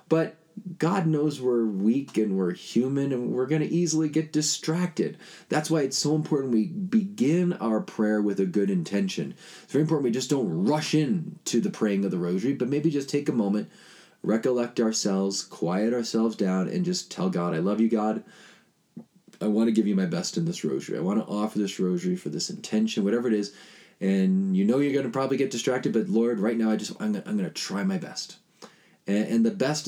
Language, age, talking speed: English, 20-39, 210 wpm